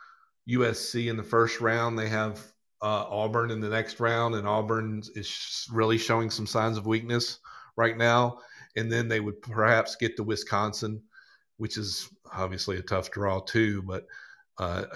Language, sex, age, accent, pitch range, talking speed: English, male, 40-59, American, 100-115 Hz, 165 wpm